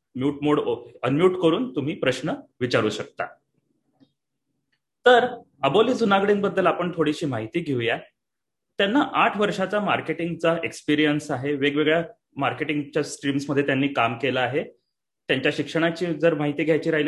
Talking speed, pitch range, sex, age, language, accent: 115 wpm, 140-170 Hz, male, 30-49, Marathi, native